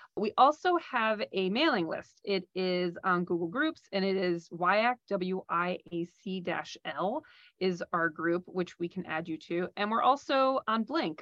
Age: 30-49